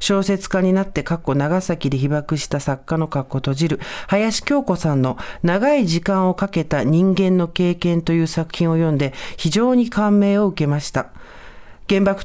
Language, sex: Japanese, male